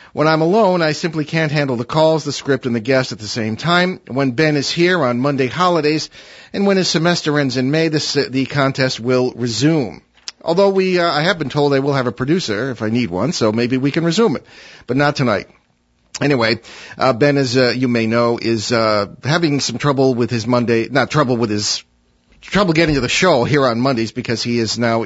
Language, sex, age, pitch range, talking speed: English, male, 50-69, 125-165 Hz, 225 wpm